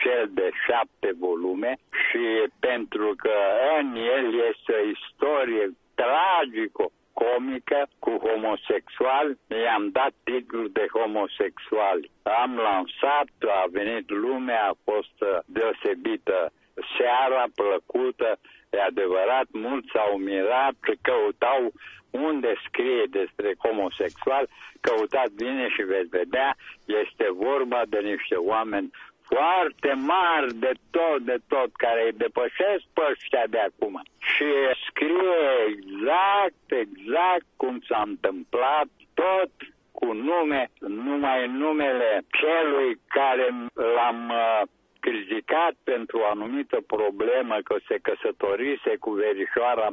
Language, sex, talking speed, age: Romanian, male, 105 wpm, 60-79